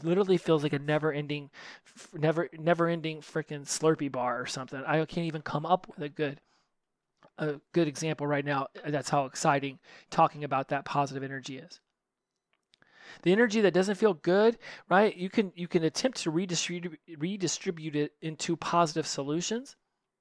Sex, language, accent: male, English, American